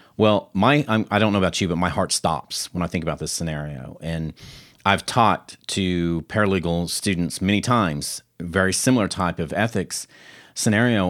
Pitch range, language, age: 85-105 Hz, English, 40-59